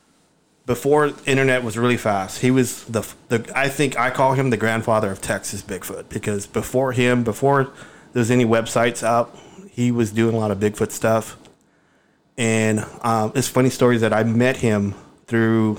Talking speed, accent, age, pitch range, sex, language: 175 wpm, American, 30-49, 110-125 Hz, male, English